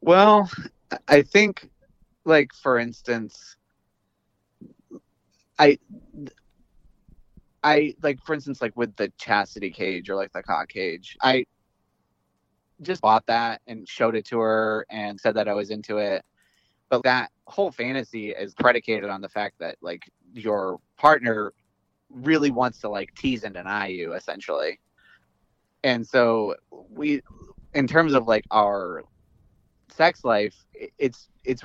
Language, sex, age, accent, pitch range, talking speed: English, male, 30-49, American, 105-135 Hz, 135 wpm